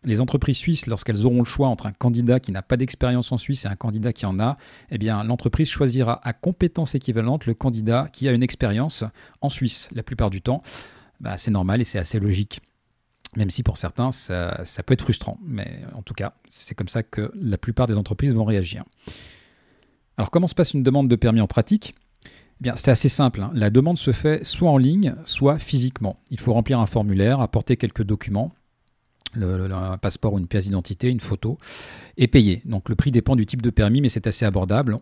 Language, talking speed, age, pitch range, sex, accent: French, 210 wpm, 40-59, 105-130 Hz, male, French